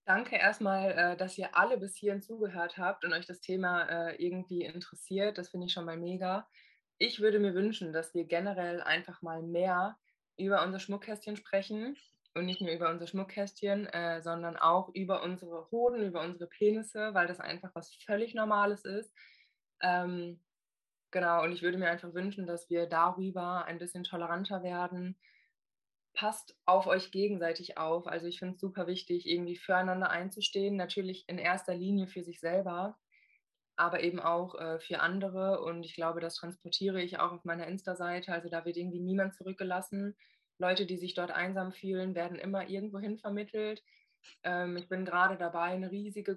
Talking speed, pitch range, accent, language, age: 170 wpm, 175-195 Hz, German, German, 20-39